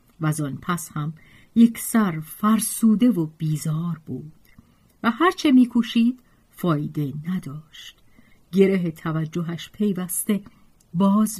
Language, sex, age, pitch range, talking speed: Persian, female, 50-69, 170-240 Hz, 95 wpm